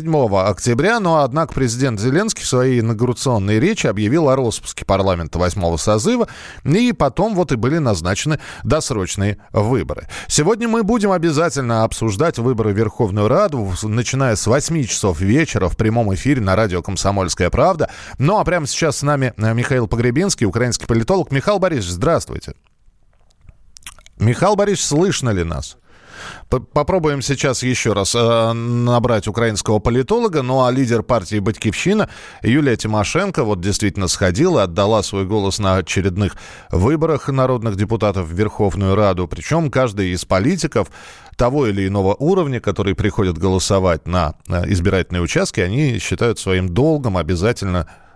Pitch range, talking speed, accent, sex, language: 95-135 Hz, 135 wpm, native, male, Russian